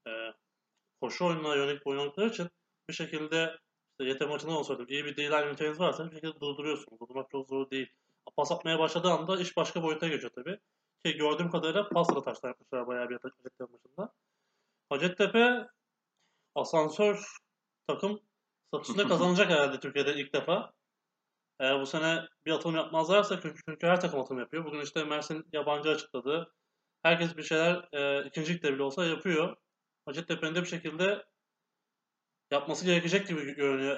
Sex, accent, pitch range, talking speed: male, native, 145-180 Hz, 150 wpm